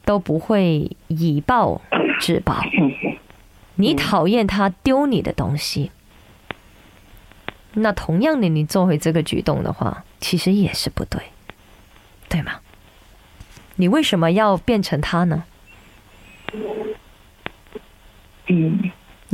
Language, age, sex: Chinese, 30-49, female